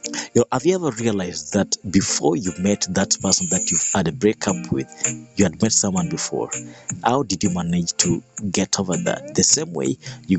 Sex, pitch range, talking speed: male, 90-115 Hz, 200 wpm